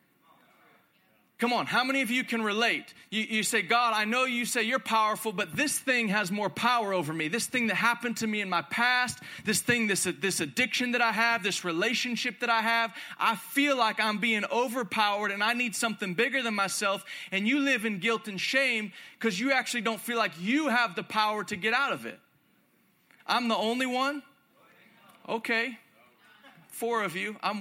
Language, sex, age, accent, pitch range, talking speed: English, male, 30-49, American, 215-255 Hz, 200 wpm